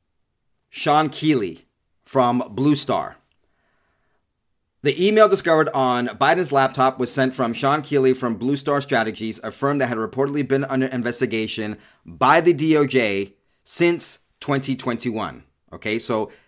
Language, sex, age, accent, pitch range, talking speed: English, male, 30-49, American, 110-135 Hz, 125 wpm